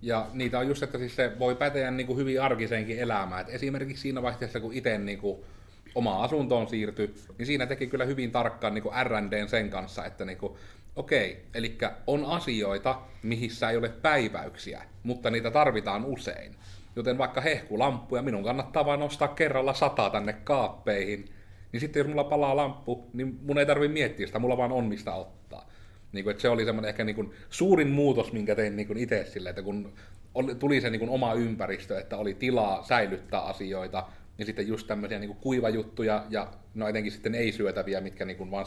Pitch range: 100-130 Hz